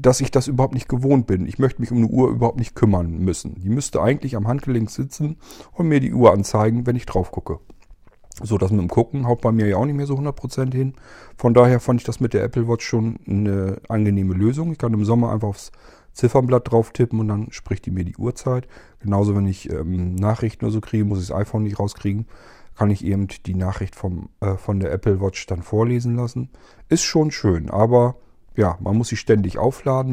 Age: 40-59